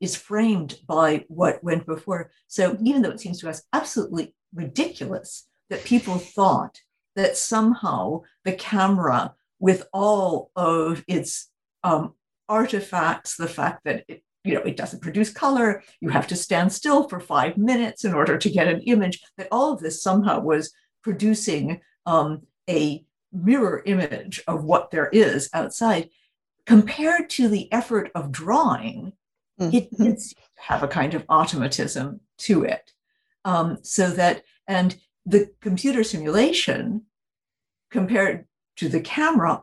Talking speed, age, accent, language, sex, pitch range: 140 wpm, 60-79, American, English, female, 165-220 Hz